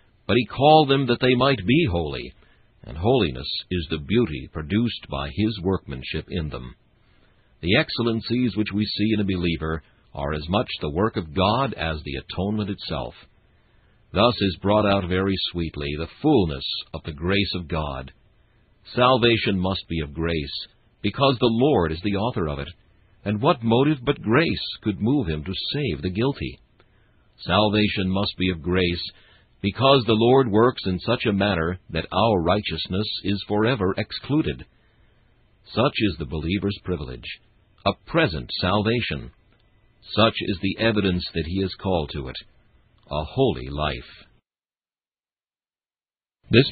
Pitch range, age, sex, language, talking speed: 85-115 Hz, 60-79, male, English, 150 wpm